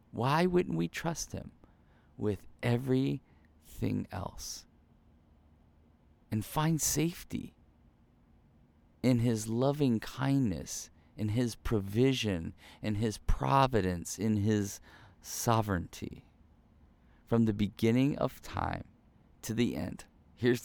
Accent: American